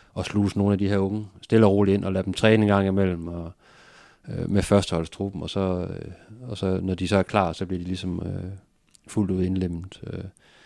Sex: male